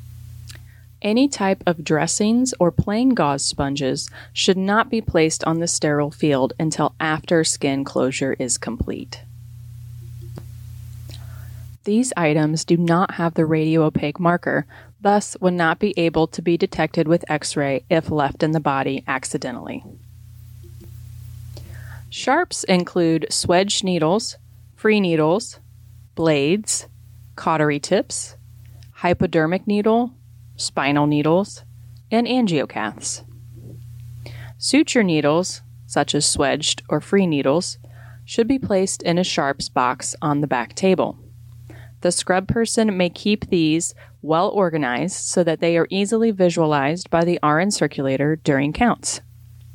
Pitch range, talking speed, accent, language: 120-175 Hz, 120 wpm, American, English